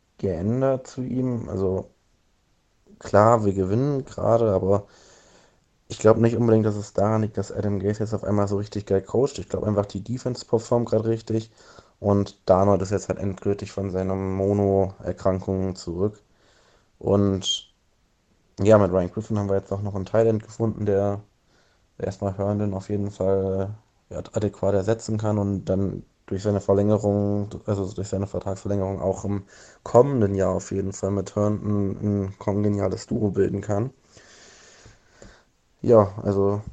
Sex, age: male, 20-39